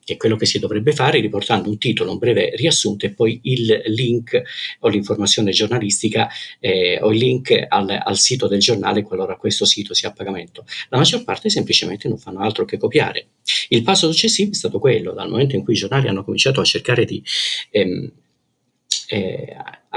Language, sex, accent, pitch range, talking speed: Italian, male, native, 105-170 Hz, 190 wpm